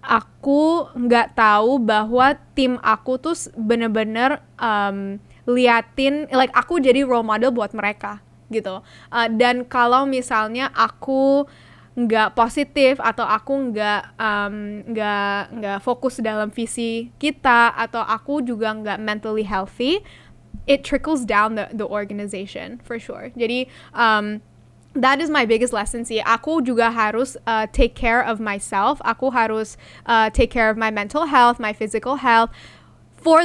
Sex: female